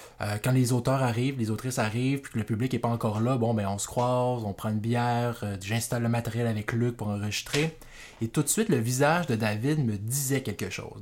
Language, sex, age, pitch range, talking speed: French, male, 20-39, 110-145 Hz, 240 wpm